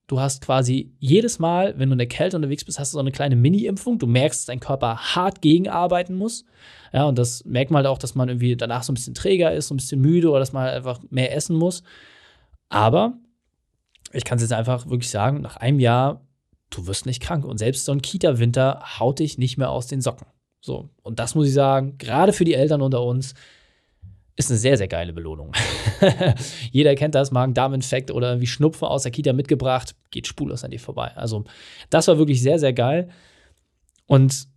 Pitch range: 125-165 Hz